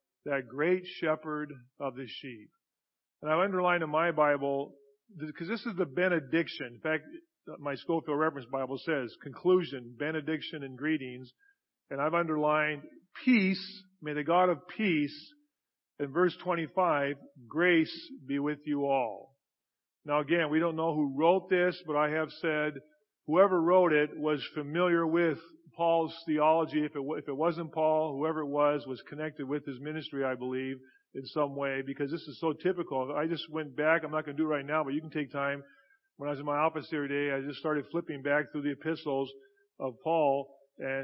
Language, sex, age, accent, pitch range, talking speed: English, male, 50-69, American, 140-165 Hz, 185 wpm